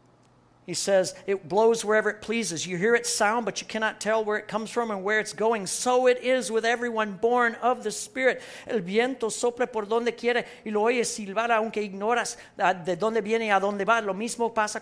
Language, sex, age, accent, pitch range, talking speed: English, male, 50-69, American, 185-240 Hz, 215 wpm